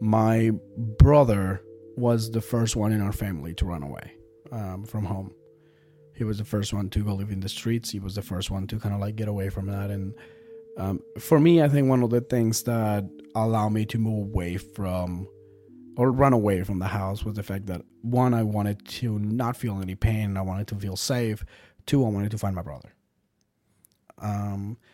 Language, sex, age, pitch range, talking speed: English, male, 30-49, 100-115 Hz, 210 wpm